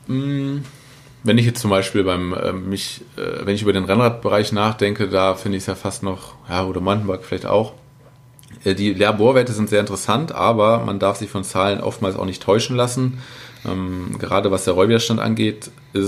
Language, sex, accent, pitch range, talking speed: German, male, German, 95-120 Hz, 190 wpm